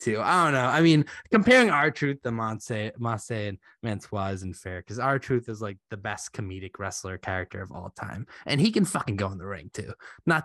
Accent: American